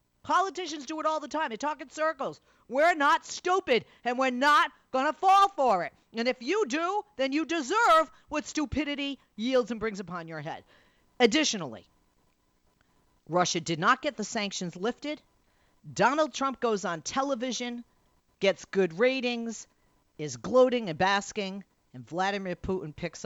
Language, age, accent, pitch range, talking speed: English, 40-59, American, 155-255 Hz, 155 wpm